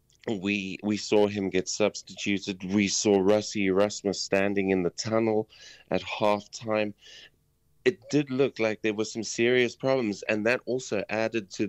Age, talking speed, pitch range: 30-49, 155 wpm, 95-115 Hz